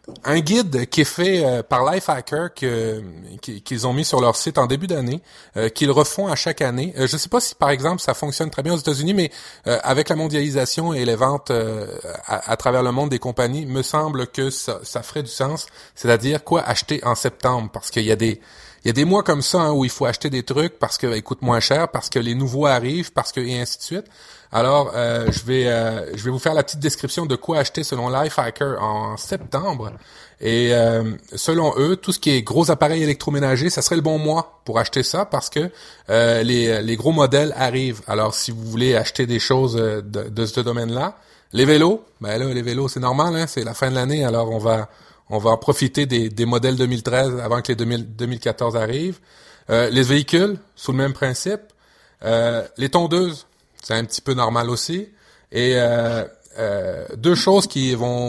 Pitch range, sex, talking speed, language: 120-150 Hz, male, 220 wpm, French